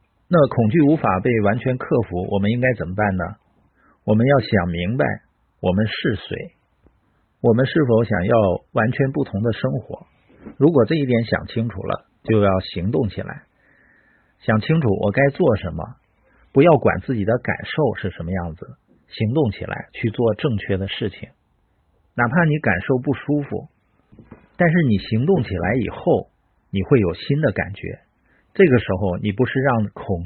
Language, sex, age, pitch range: Chinese, male, 50-69, 100-135 Hz